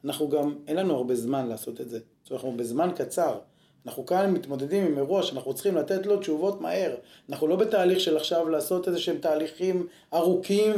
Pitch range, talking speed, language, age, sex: 130-170 Hz, 185 wpm, Hebrew, 30-49, male